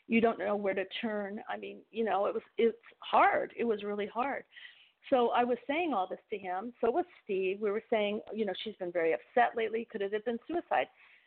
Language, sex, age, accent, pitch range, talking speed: English, female, 50-69, American, 185-245 Hz, 235 wpm